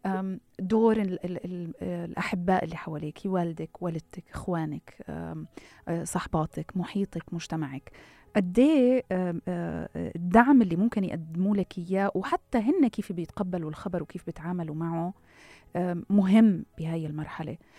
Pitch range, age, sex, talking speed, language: 165-200 Hz, 30-49, female, 100 wpm, Arabic